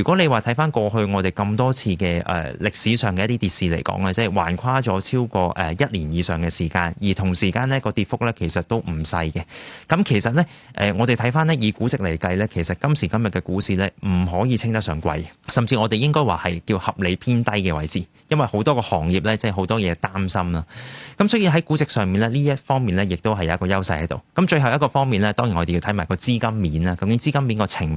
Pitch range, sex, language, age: 90-125 Hz, male, Chinese, 30-49